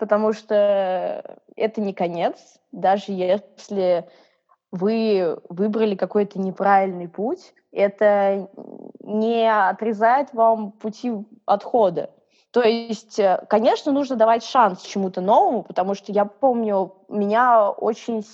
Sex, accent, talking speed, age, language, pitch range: female, native, 105 wpm, 20-39, Russian, 185-225 Hz